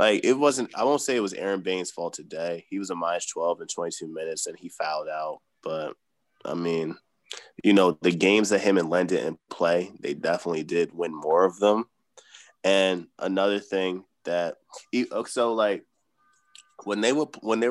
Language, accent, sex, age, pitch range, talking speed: English, American, male, 20-39, 90-125 Hz, 190 wpm